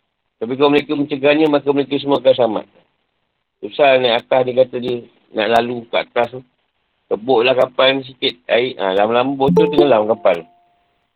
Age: 50-69